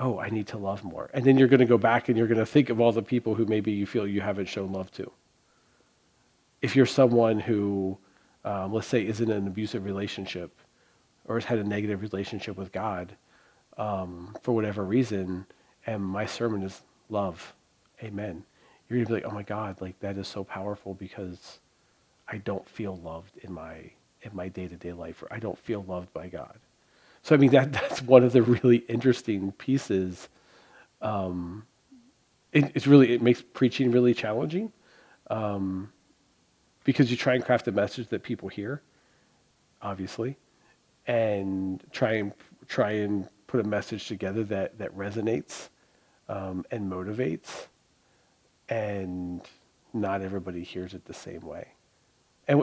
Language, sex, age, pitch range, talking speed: English, male, 40-59, 95-120 Hz, 170 wpm